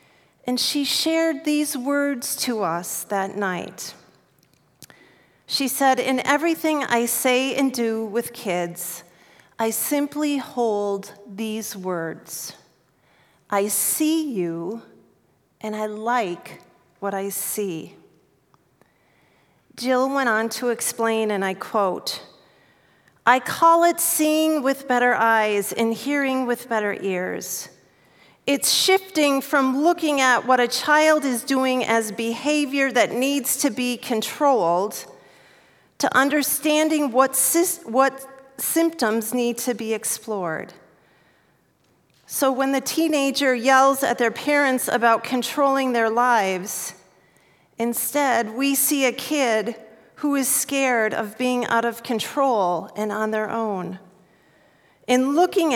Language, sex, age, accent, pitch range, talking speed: English, female, 40-59, American, 220-275 Hz, 120 wpm